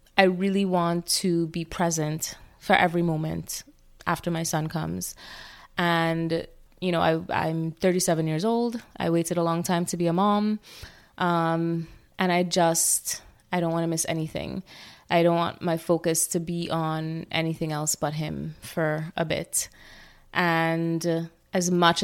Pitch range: 160-180 Hz